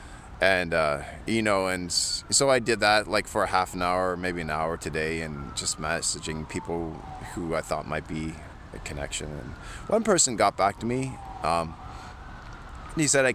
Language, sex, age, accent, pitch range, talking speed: English, male, 30-49, American, 80-100 Hz, 185 wpm